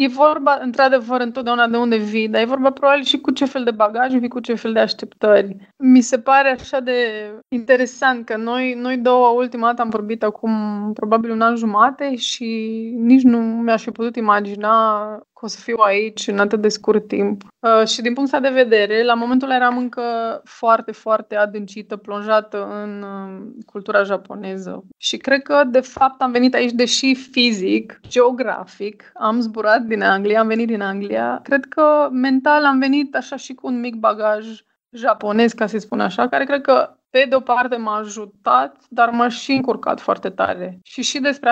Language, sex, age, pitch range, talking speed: Romanian, female, 20-39, 215-255 Hz, 185 wpm